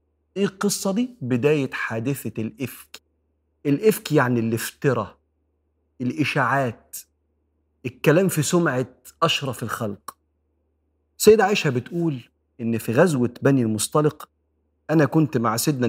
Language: Arabic